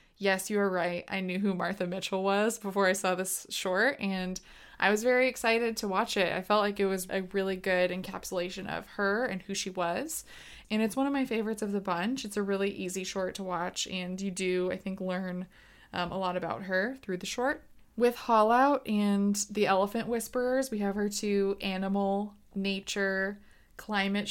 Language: English